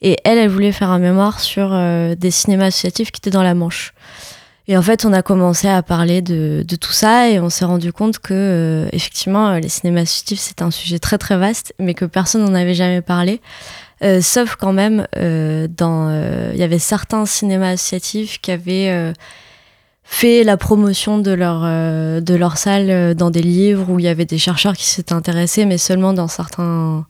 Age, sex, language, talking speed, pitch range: 20-39, female, French, 210 wpm, 170-195 Hz